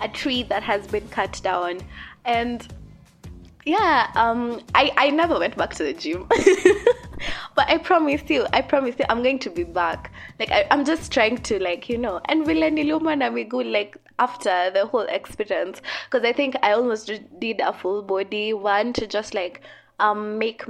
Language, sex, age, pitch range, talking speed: English, female, 20-39, 205-285 Hz, 185 wpm